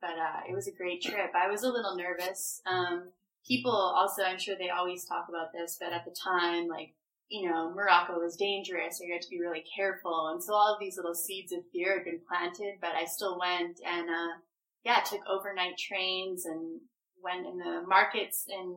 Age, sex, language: 20-39, female, English